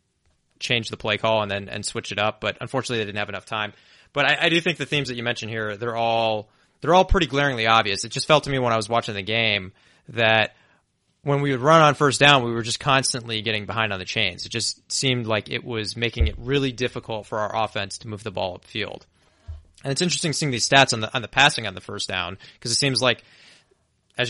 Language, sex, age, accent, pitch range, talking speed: English, male, 20-39, American, 110-135 Hz, 250 wpm